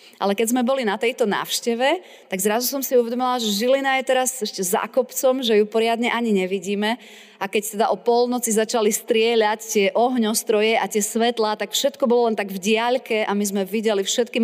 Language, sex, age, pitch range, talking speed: Slovak, female, 30-49, 185-225 Hz, 200 wpm